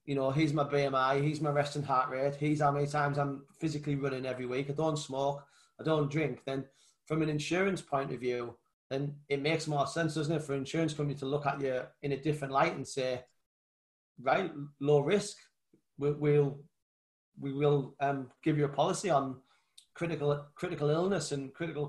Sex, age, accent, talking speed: male, 30-49, British, 190 wpm